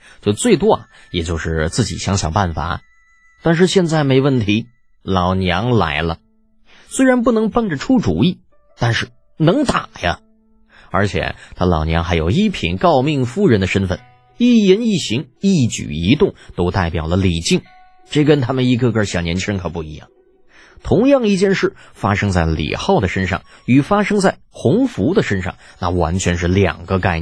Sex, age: male, 20-39